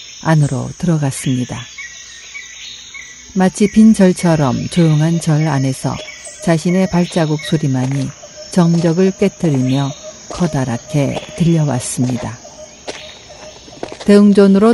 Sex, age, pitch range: female, 50-69, 130-185 Hz